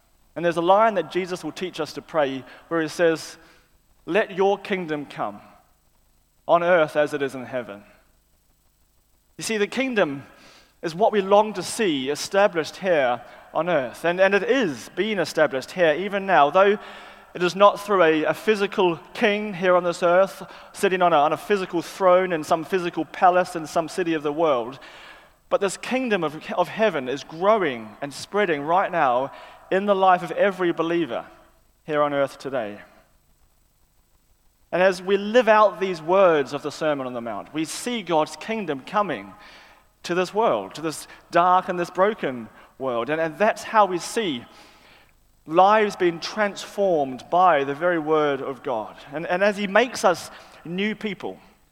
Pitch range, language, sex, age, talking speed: 155-200 Hz, English, male, 30-49, 175 wpm